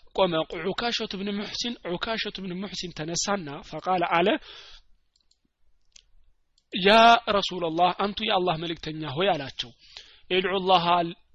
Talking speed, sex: 110 wpm, male